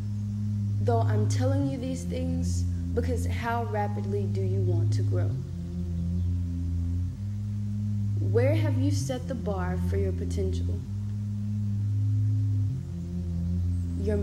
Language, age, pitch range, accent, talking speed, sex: English, 20-39, 90-105 Hz, American, 100 wpm, female